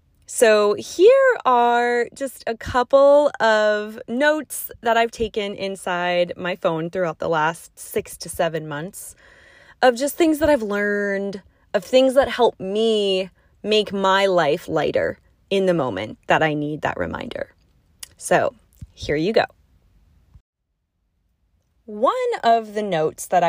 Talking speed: 135 wpm